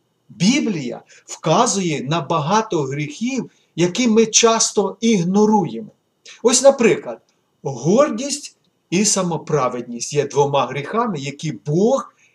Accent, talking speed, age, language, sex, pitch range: native, 90 wpm, 50-69, Ukrainian, male, 150-225 Hz